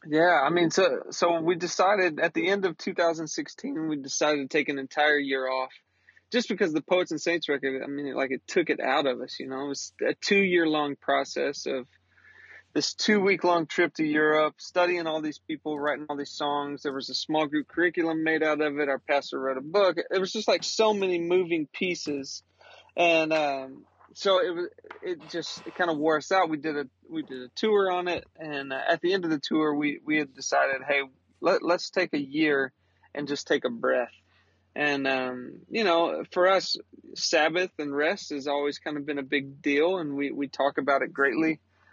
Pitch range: 140-175 Hz